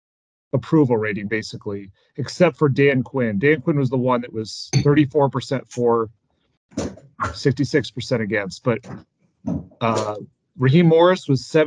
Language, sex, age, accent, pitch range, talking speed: English, male, 30-49, American, 120-150 Hz, 120 wpm